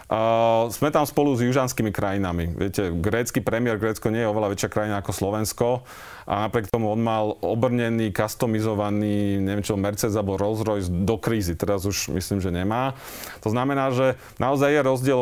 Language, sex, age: Slovak, male, 30-49